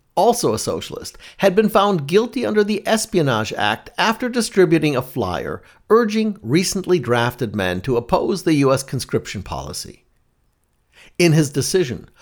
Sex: male